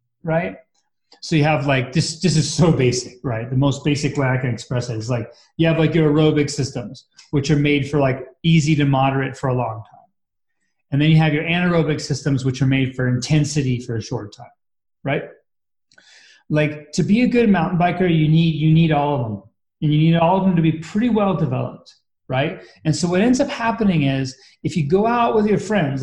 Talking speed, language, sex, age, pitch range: 220 wpm, English, male, 30-49, 140-185 Hz